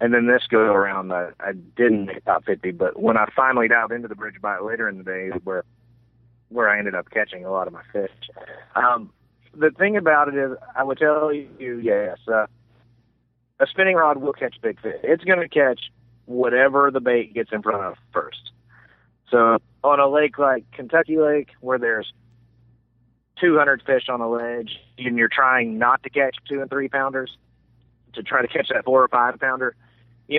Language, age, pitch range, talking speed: English, 30-49, 115-135 Hz, 190 wpm